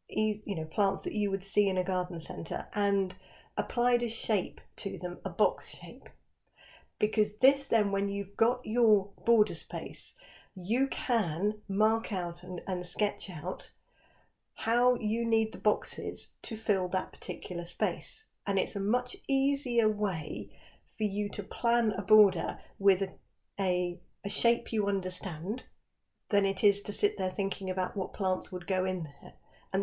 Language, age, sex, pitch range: English, 40-59, female, 190-225 Hz